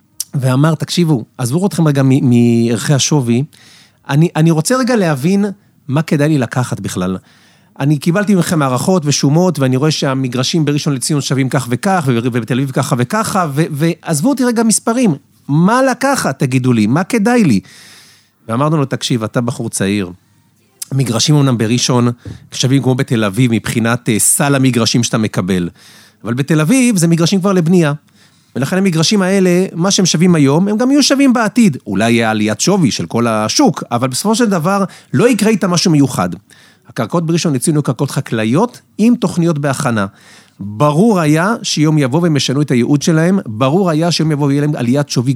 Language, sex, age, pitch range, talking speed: Hebrew, male, 40-59, 120-170 Hz, 165 wpm